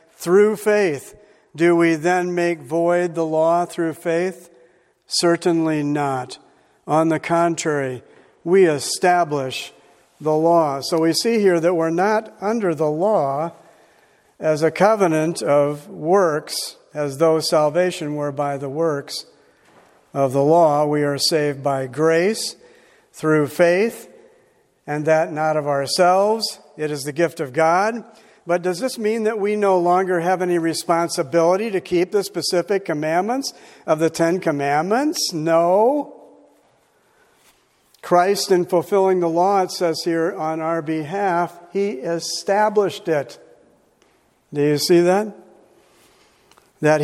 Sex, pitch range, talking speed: male, 155-195 Hz, 130 wpm